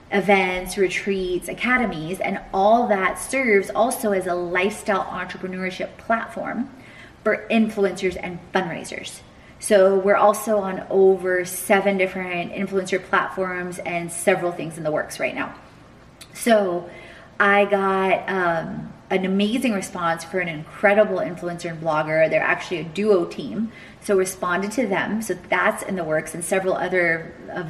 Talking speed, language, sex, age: 140 wpm, English, female, 30-49